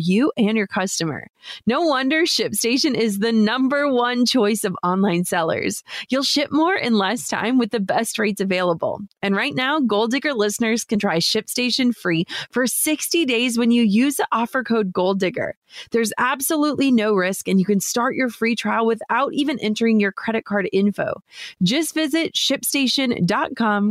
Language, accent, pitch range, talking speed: English, American, 205-265 Hz, 170 wpm